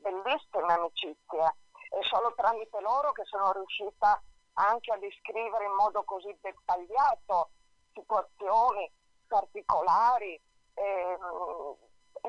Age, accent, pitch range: 50-69, native, 195-245 Hz